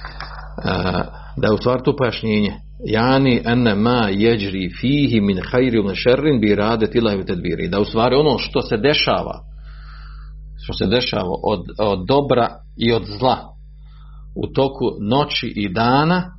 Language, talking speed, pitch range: Croatian, 120 wpm, 95-130 Hz